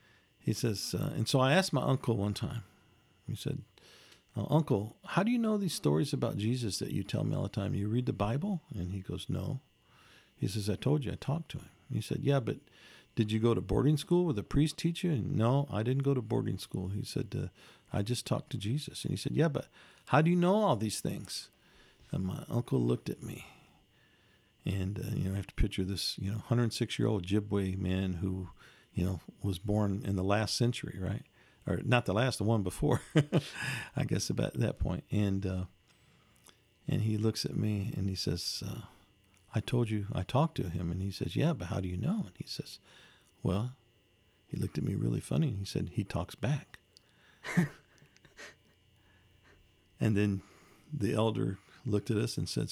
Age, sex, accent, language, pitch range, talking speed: 50-69, male, American, English, 95-135 Hz, 205 wpm